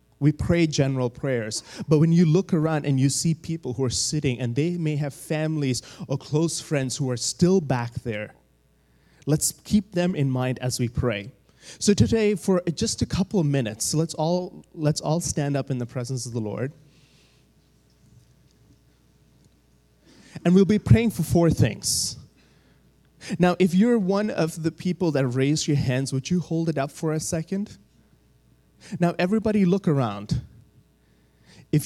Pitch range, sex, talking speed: 125-165 Hz, male, 165 wpm